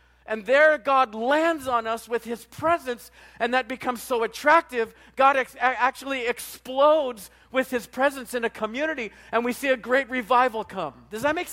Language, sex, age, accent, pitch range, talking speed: English, male, 50-69, American, 220-280 Hz, 175 wpm